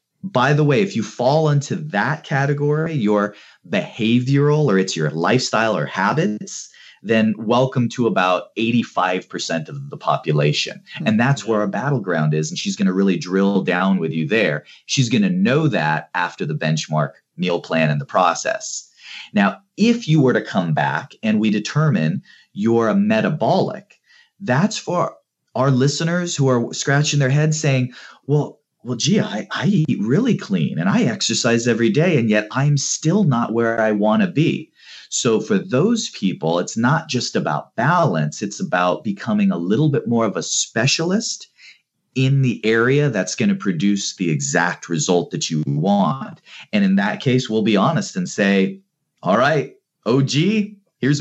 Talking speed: 170 wpm